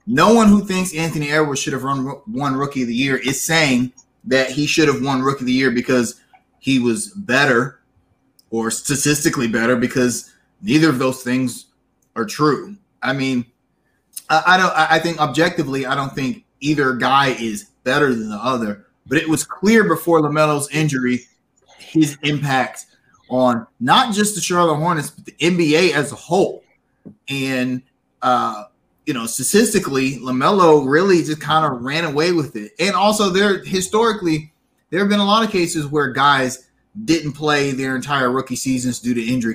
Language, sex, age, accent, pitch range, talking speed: English, male, 30-49, American, 130-170 Hz, 170 wpm